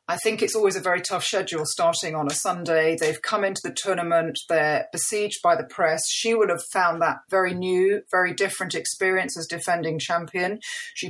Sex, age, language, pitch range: female, 40-59, English, 160-190 Hz